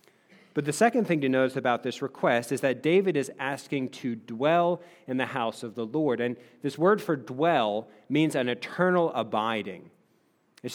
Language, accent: English, American